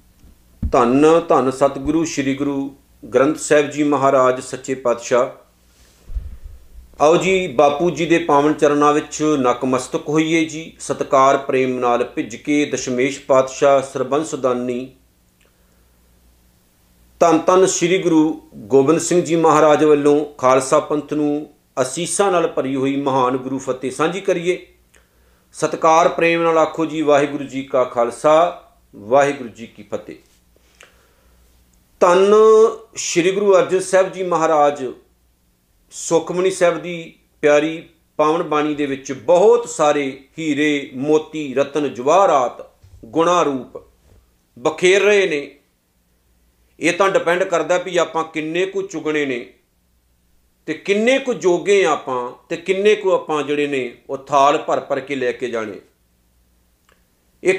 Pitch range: 120-165 Hz